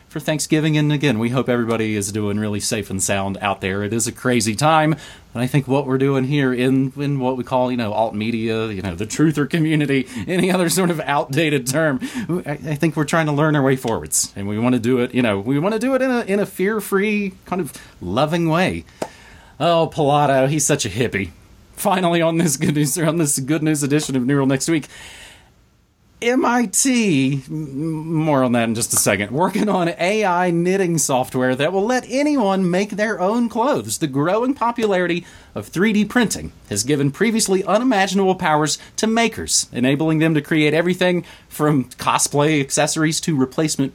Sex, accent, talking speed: male, American, 195 wpm